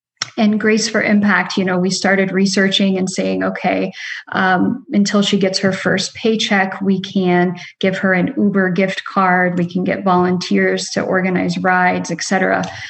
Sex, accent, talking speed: female, American, 165 wpm